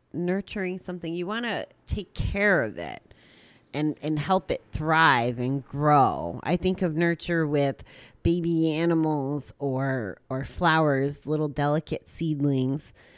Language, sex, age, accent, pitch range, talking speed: English, female, 30-49, American, 135-165 Hz, 130 wpm